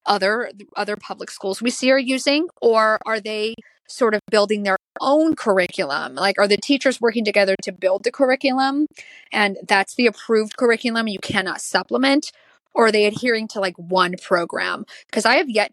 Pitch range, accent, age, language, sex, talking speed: 195-235 Hz, American, 20-39, English, female, 180 wpm